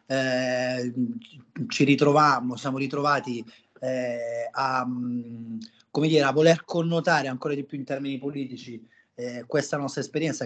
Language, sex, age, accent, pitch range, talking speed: Italian, male, 30-49, native, 125-140 Hz, 115 wpm